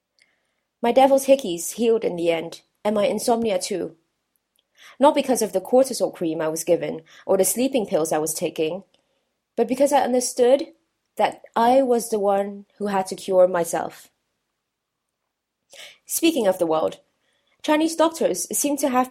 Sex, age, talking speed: female, 20-39, 155 wpm